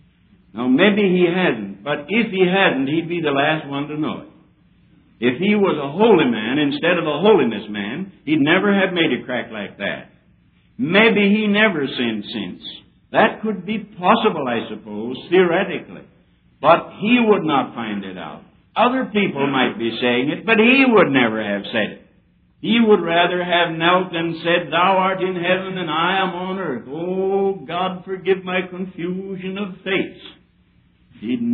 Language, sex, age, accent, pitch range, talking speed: English, male, 60-79, American, 145-195 Hz, 175 wpm